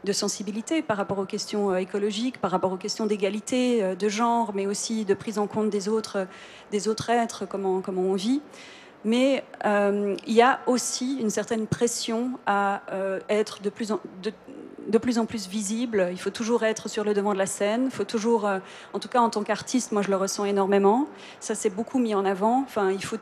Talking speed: 215 wpm